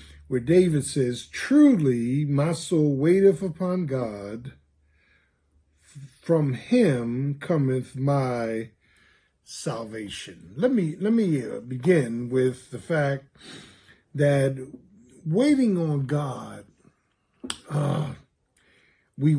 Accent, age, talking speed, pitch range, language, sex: American, 50-69, 85 wpm, 125-170 Hz, English, male